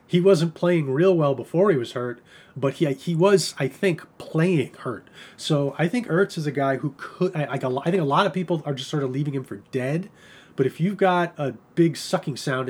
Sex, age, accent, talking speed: male, 30-49, American, 230 wpm